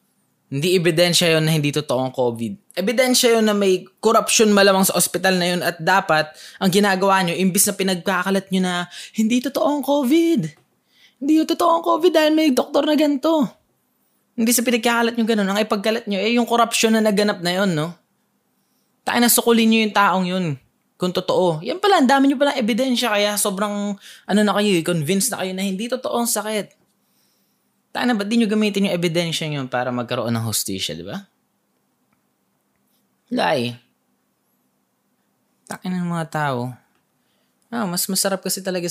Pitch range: 160-225 Hz